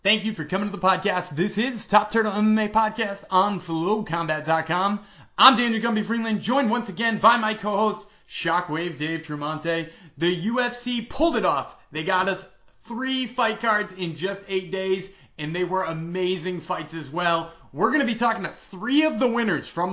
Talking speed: 185 wpm